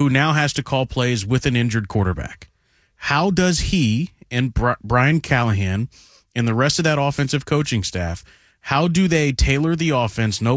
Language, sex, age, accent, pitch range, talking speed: English, male, 30-49, American, 120-155 Hz, 175 wpm